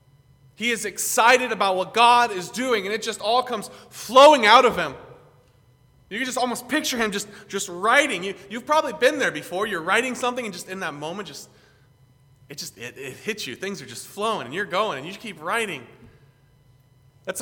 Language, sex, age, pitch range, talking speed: English, male, 20-39, 140-235 Hz, 205 wpm